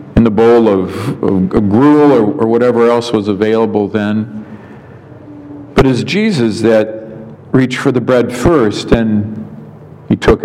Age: 50-69